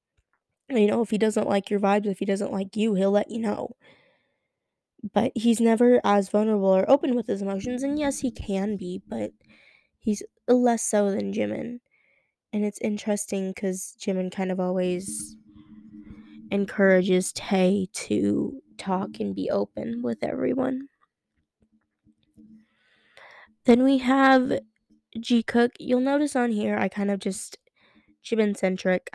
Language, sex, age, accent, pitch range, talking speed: English, female, 10-29, American, 180-220 Hz, 140 wpm